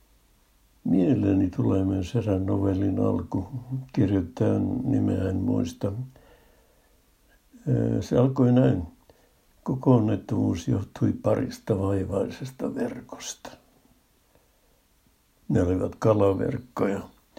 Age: 60-79